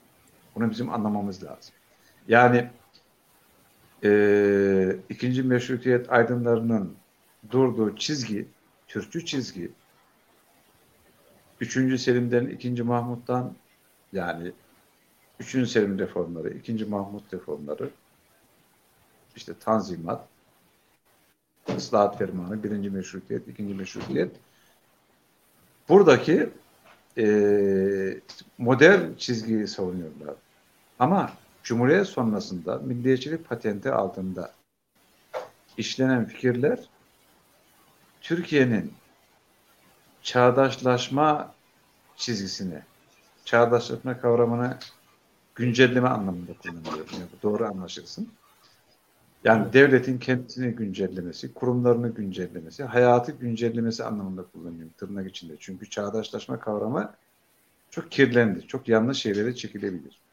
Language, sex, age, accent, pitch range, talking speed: Turkish, male, 60-79, native, 100-125 Hz, 75 wpm